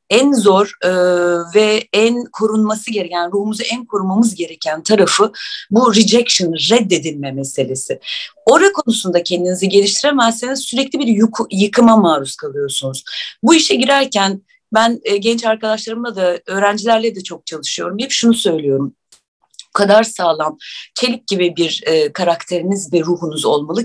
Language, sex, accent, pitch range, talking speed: Turkish, female, native, 180-250 Hz, 120 wpm